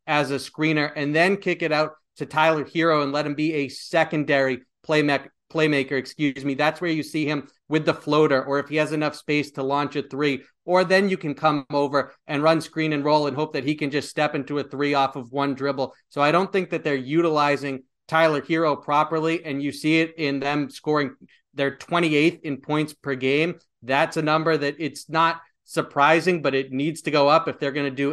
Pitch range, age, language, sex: 140-155 Hz, 30-49, English, male